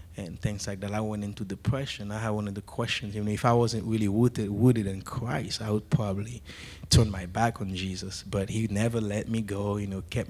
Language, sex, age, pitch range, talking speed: English, male, 20-39, 95-115 Hz, 240 wpm